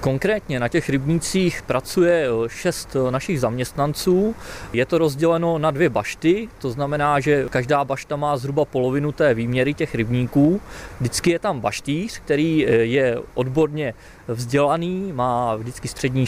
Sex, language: male, Czech